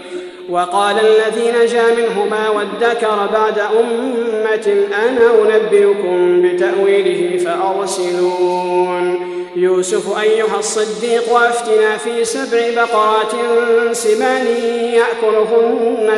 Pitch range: 205-240 Hz